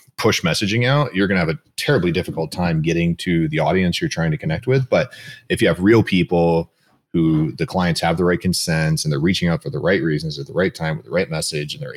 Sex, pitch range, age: male, 85-120 Hz, 30-49